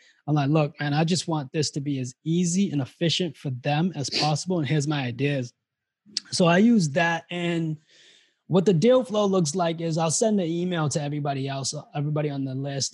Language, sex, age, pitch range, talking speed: English, male, 20-39, 145-170 Hz, 210 wpm